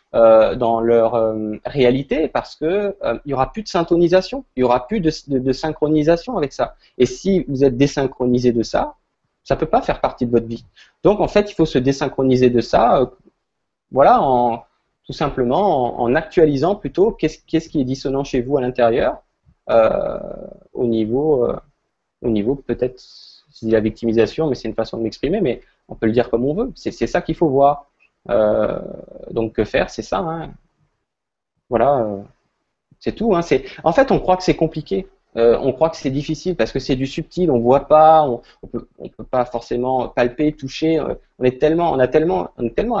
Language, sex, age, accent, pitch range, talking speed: French, male, 20-39, French, 120-160 Hz, 200 wpm